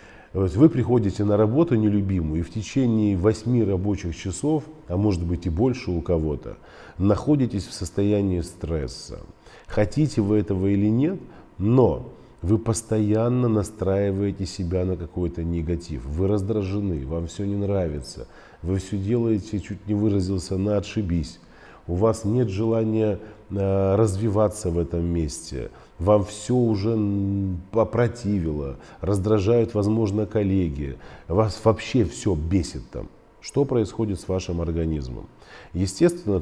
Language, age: Russian, 40-59